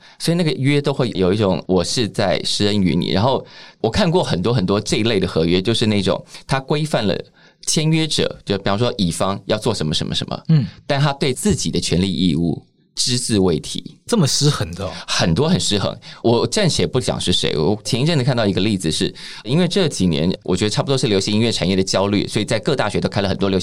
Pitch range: 95-140 Hz